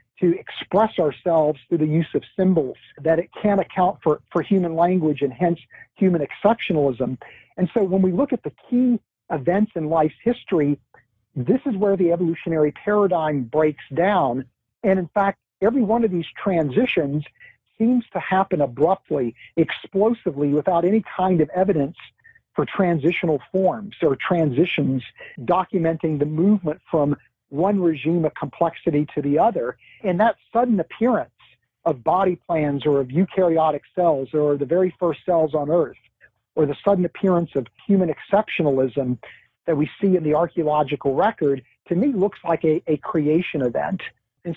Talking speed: 155 wpm